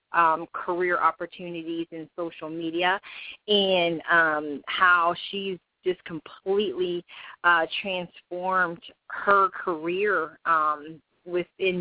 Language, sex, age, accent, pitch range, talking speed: English, female, 30-49, American, 165-190 Hz, 90 wpm